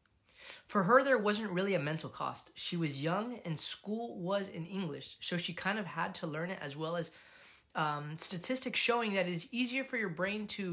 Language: English